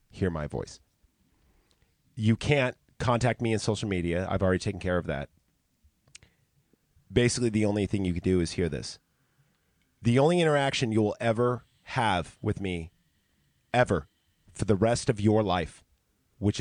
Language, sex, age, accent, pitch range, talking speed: English, male, 30-49, American, 85-115 Hz, 150 wpm